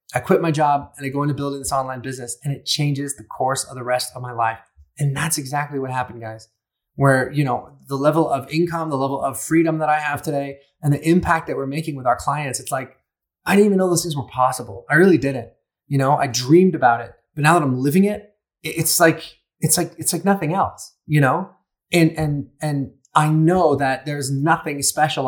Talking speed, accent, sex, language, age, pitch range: 230 wpm, American, male, English, 20-39, 130-160 Hz